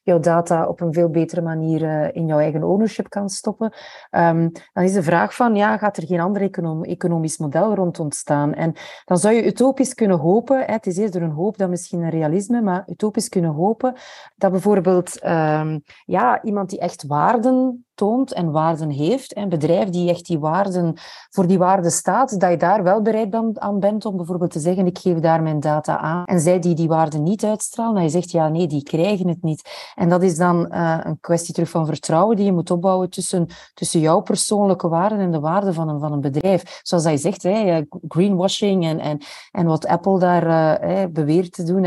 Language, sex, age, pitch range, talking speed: Dutch, female, 30-49, 170-210 Hz, 205 wpm